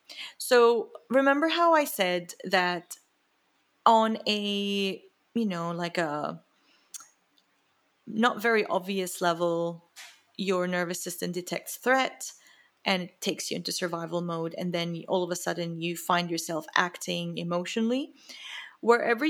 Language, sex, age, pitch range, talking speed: English, female, 30-49, 175-220 Hz, 125 wpm